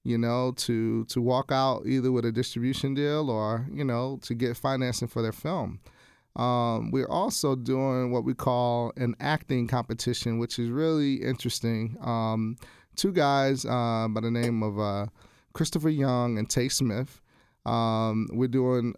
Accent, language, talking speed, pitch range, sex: American, English, 160 wpm, 115-130 Hz, male